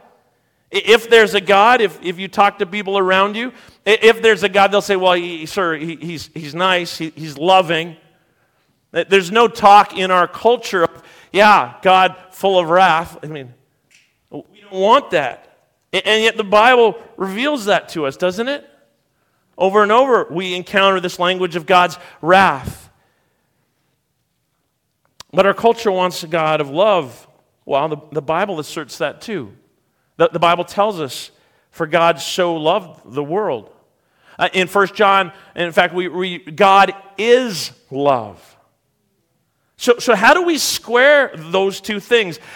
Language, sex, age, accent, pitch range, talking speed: English, male, 40-59, American, 165-210 Hz, 155 wpm